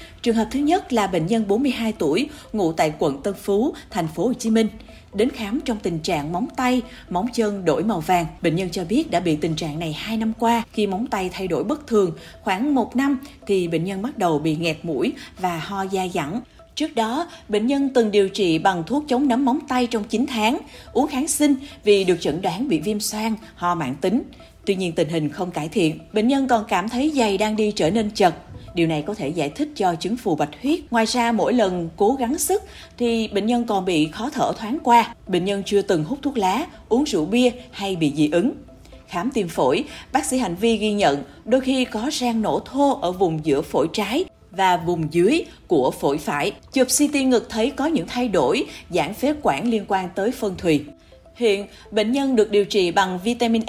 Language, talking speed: Vietnamese, 225 wpm